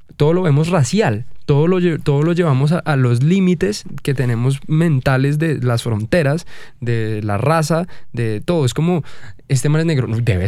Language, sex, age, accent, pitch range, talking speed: Spanish, male, 20-39, Colombian, 125-165 Hz, 165 wpm